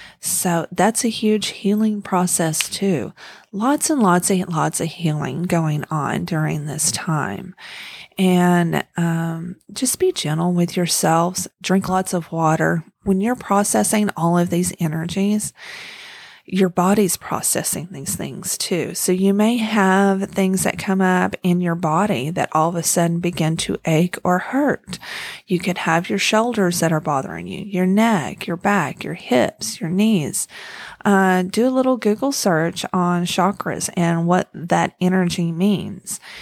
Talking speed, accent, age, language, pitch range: 155 wpm, American, 30-49, English, 165-200 Hz